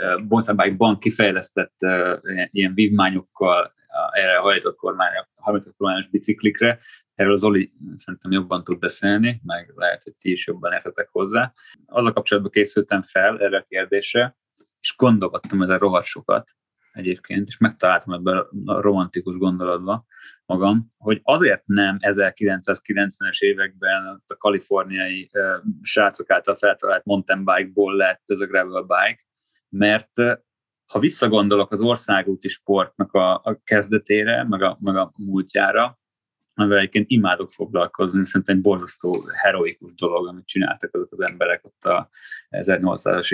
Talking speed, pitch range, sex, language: 135 wpm, 95-115 Hz, male, Hungarian